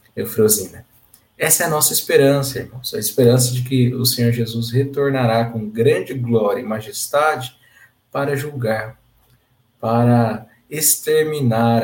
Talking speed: 120 wpm